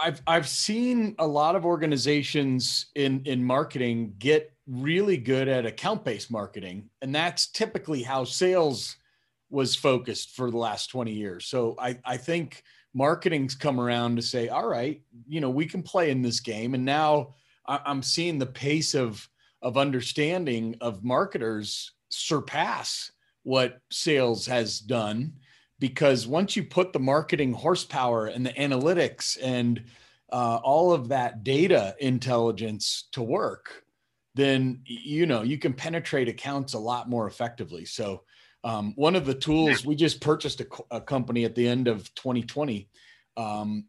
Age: 40-59